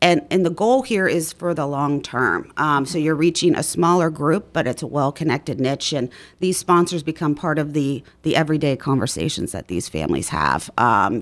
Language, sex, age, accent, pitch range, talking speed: English, female, 40-59, American, 150-190 Hz, 200 wpm